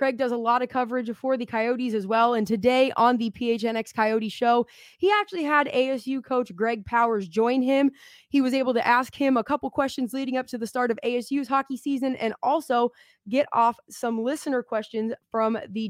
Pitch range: 220-255 Hz